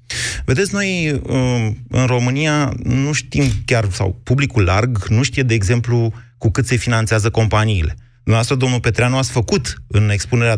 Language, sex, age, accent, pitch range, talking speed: Romanian, male, 30-49, native, 105-130 Hz, 140 wpm